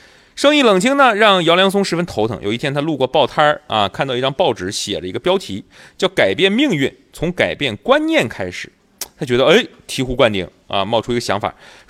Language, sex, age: Chinese, male, 30-49